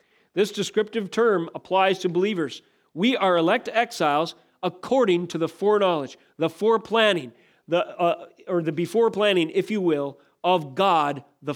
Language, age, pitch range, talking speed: English, 40-59, 150-195 Hz, 145 wpm